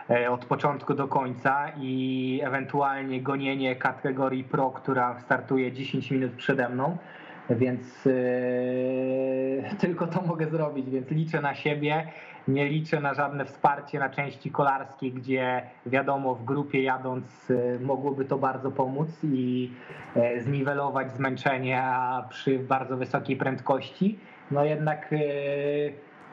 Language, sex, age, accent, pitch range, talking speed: Polish, male, 20-39, native, 130-150 Hz, 125 wpm